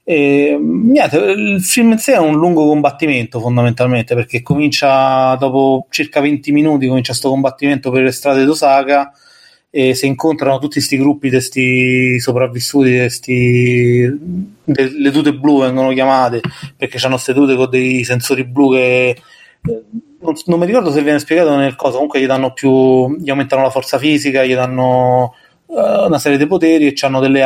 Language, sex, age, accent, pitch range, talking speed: Italian, male, 20-39, native, 125-145 Hz, 170 wpm